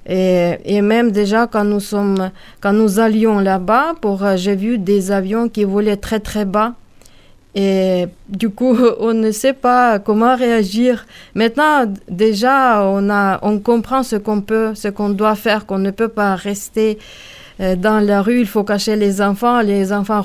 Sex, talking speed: female, 170 wpm